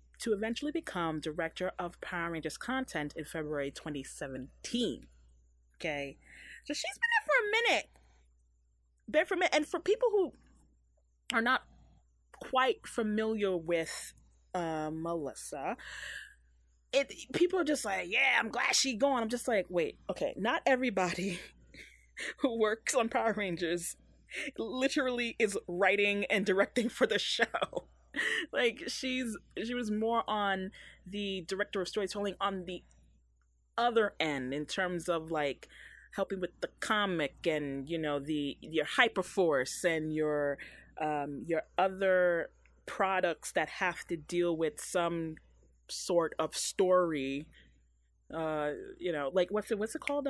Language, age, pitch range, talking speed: English, 30-49, 150-230 Hz, 140 wpm